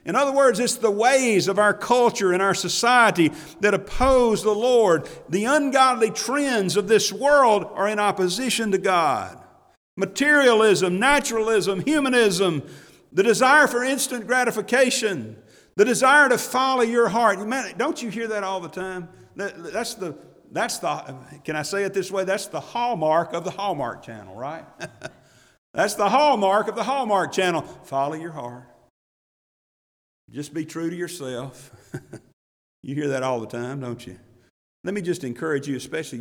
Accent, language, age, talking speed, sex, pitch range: American, English, 50-69, 160 wpm, male, 140-225 Hz